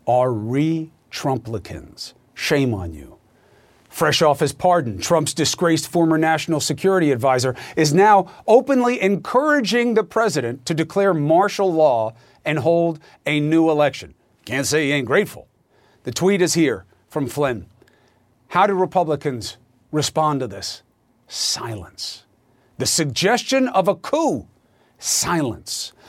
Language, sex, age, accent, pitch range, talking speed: English, male, 50-69, American, 125-180 Hz, 125 wpm